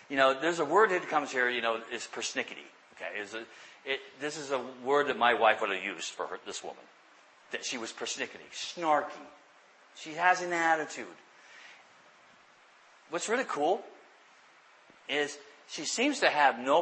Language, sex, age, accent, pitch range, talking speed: English, male, 50-69, American, 145-230 Hz, 170 wpm